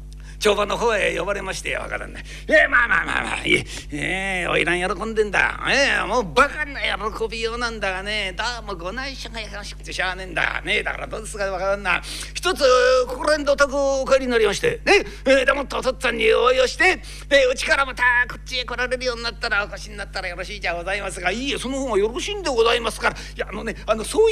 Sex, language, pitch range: male, Japanese, 200-290 Hz